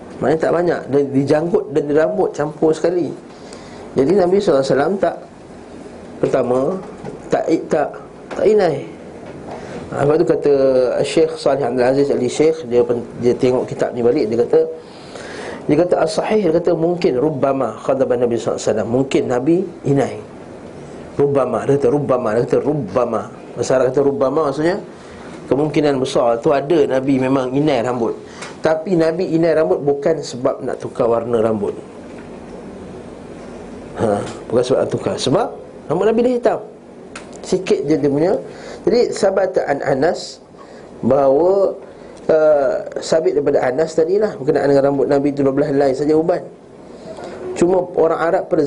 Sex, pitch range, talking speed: male, 130-165 Hz, 145 wpm